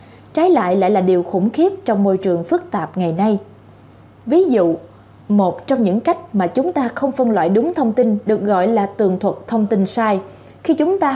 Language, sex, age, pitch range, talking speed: Vietnamese, female, 20-39, 190-270 Hz, 215 wpm